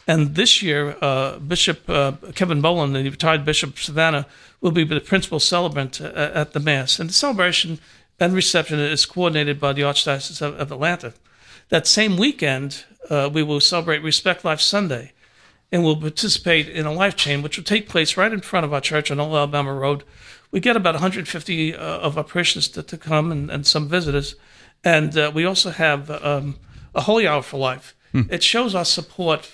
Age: 60-79